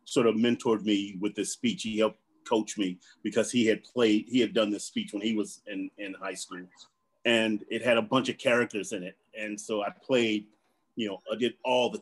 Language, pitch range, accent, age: English, 110-165 Hz, American, 30-49